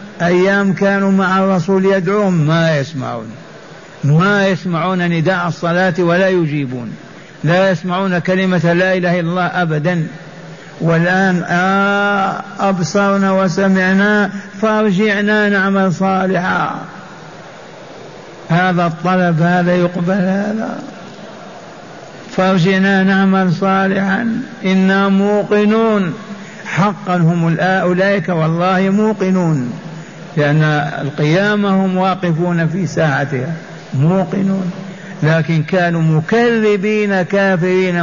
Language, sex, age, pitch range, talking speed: Arabic, male, 60-79, 170-195 Hz, 85 wpm